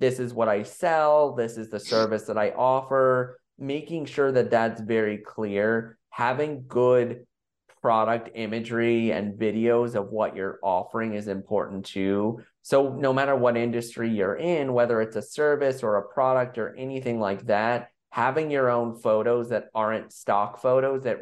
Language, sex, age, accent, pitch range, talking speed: English, male, 30-49, American, 110-135 Hz, 165 wpm